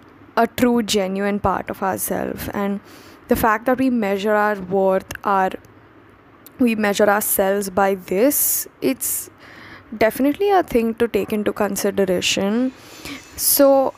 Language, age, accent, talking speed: English, 10-29, Indian, 125 wpm